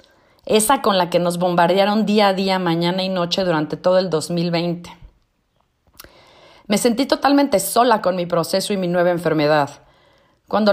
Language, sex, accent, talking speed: Spanish, female, Mexican, 155 wpm